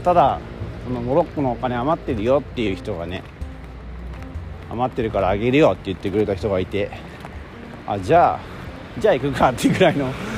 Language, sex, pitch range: Japanese, male, 85-140 Hz